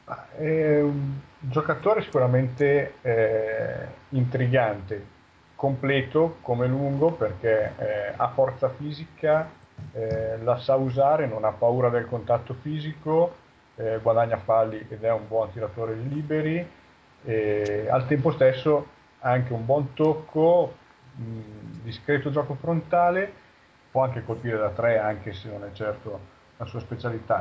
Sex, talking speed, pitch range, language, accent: male, 135 wpm, 110-145 Hz, Italian, native